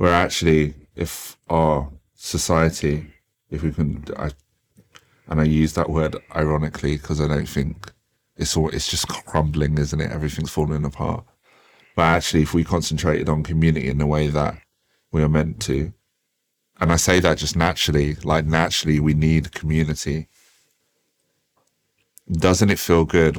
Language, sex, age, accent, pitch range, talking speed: English, male, 30-49, British, 75-90 Hz, 150 wpm